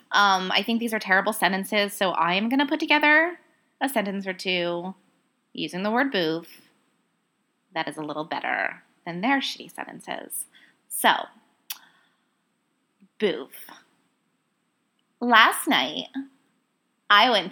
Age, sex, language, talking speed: 20-39, female, English, 125 wpm